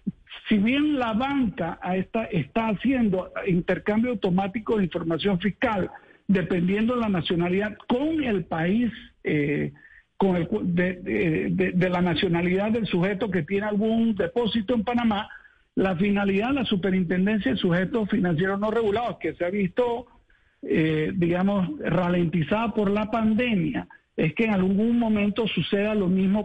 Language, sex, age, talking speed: Spanish, male, 60-79, 145 wpm